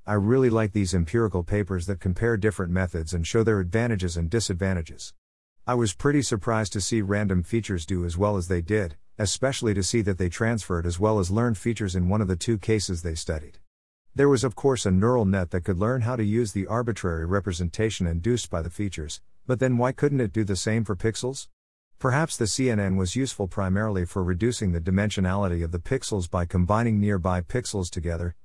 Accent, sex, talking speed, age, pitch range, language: American, male, 205 wpm, 50-69, 90-115 Hz, English